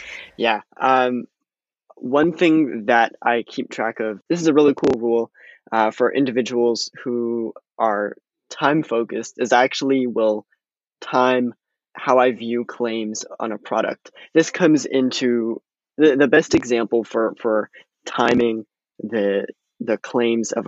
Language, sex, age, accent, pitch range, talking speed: English, male, 20-39, American, 115-135 Hz, 140 wpm